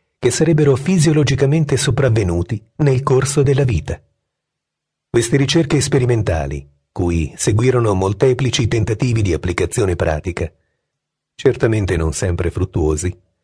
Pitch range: 90-140 Hz